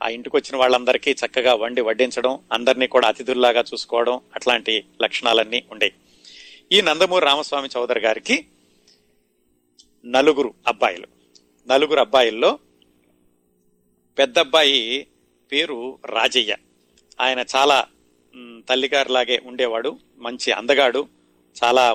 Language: Telugu